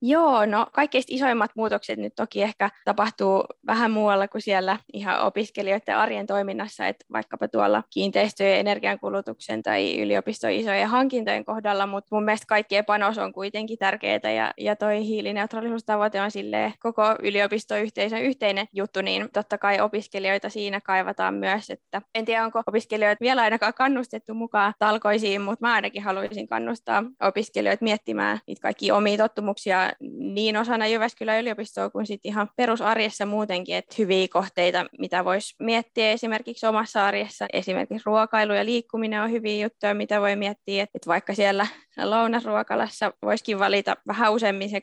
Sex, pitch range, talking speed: female, 195-220 Hz, 150 wpm